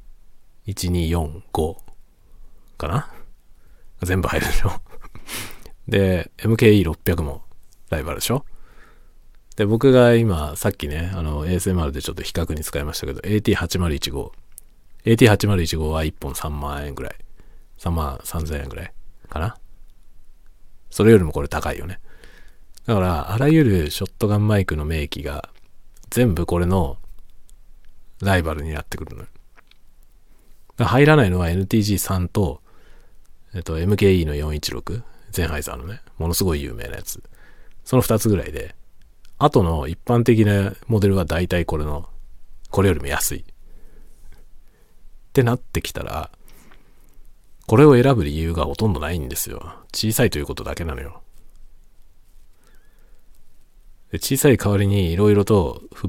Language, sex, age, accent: Japanese, male, 40-59, native